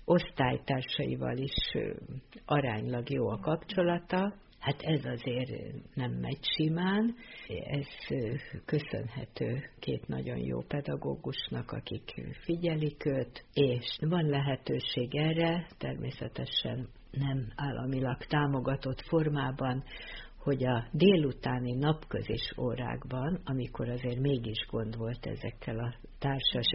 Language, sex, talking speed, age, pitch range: Hungarian, female, 95 wpm, 50-69, 120-150 Hz